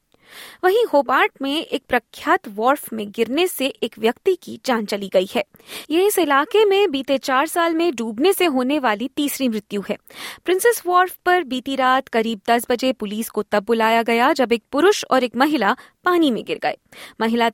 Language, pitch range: Hindi, 225-320 Hz